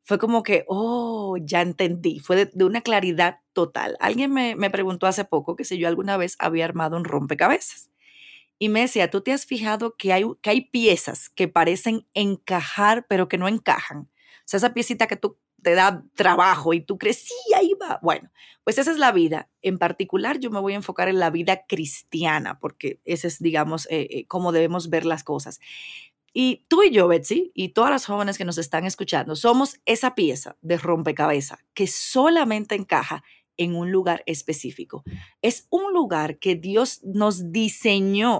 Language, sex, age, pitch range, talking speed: Spanish, female, 30-49, 175-230 Hz, 190 wpm